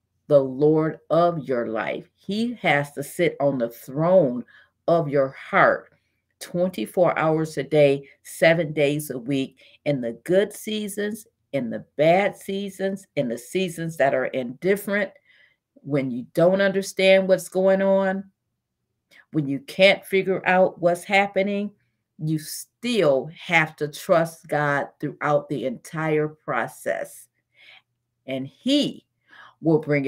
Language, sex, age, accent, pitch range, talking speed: English, female, 50-69, American, 145-210 Hz, 130 wpm